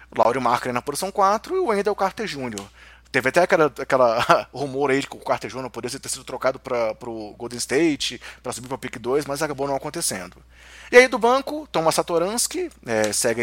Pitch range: 125-175 Hz